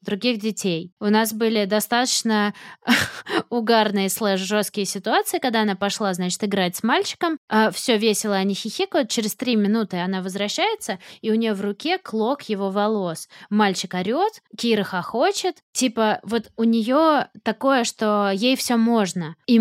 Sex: female